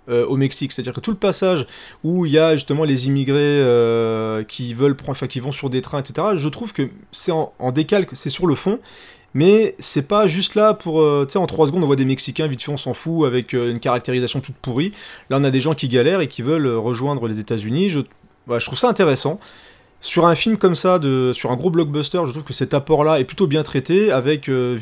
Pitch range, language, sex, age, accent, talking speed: 125-165 Hz, French, male, 30-49, French, 250 wpm